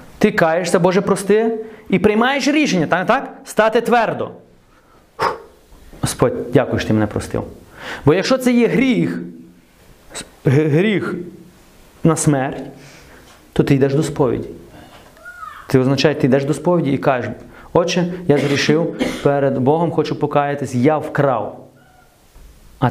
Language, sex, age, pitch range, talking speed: Ukrainian, male, 30-49, 140-180 Hz, 130 wpm